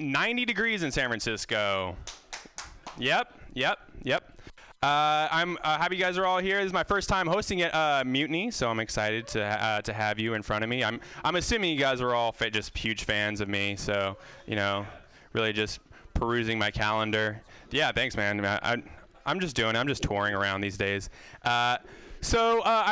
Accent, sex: American, male